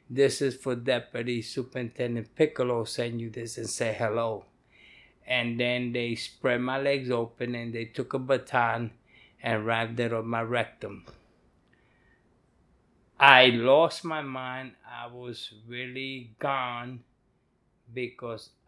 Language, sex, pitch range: English, male, 115-130 Hz